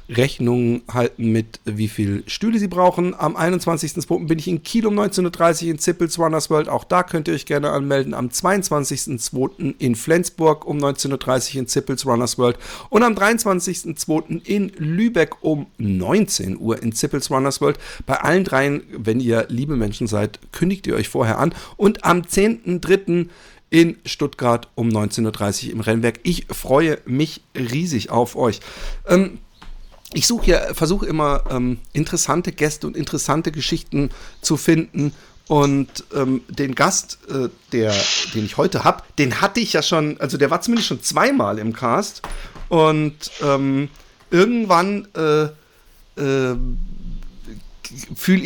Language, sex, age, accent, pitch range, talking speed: German, male, 50-69, German, 125-175 Hz, 150 wpm